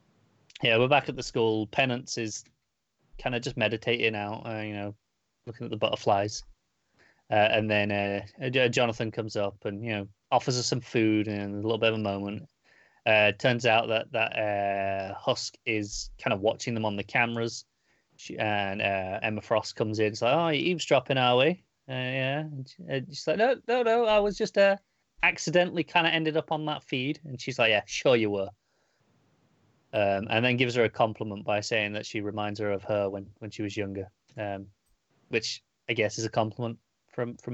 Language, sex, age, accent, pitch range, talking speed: English, male, 30-49, British, 105-125 Hz, 200 wpm